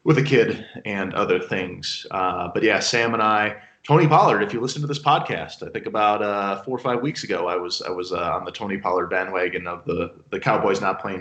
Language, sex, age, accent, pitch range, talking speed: English, male, 30-49, American, 100-145 Hz, 240 wpm